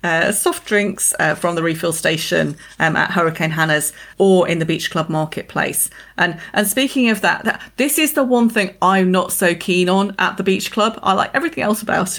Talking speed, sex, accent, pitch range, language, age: 210 wpm, female, British, 165-215 Hz, English, 30-49